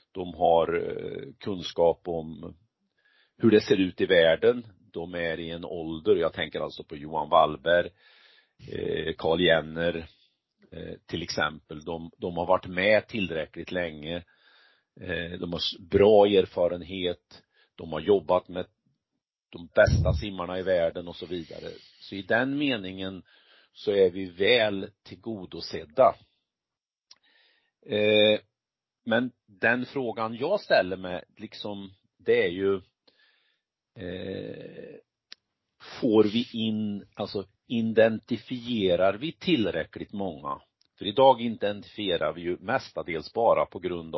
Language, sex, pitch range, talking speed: Swedish, male, 85-115 Hz, 115 wpm